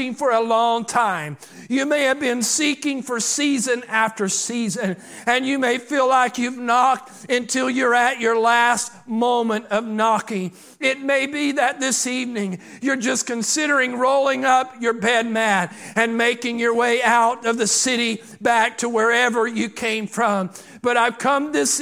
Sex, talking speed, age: male, 165 wpm, 50-69